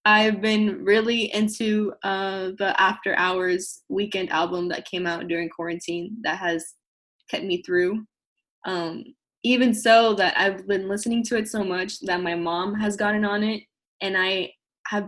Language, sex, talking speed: English, female, 165 wpm